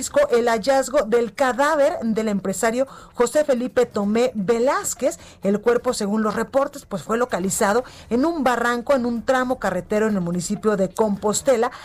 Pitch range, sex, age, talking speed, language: 205-260 Hz, female, 30-49, 150 wpm, Spanish